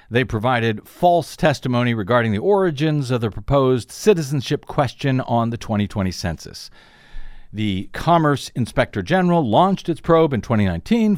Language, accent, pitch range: English, American, 105-150 Hz